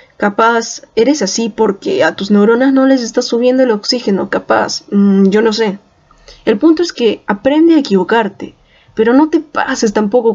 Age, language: 10-29, Spanish